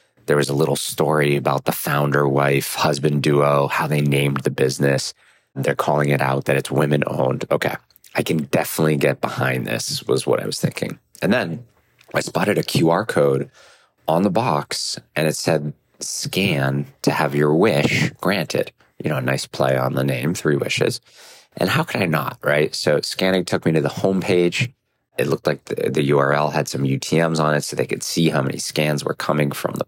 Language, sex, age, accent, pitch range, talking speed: English, male, 30-49, American, 70-80 Hz, 200 wpm